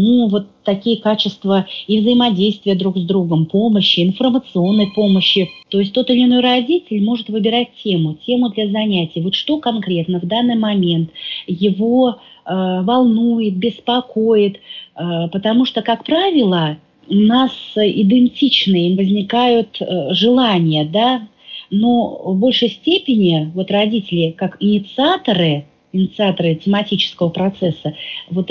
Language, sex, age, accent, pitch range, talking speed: Russian, female, 30-49, native, 180-230 Hz, 125 wpm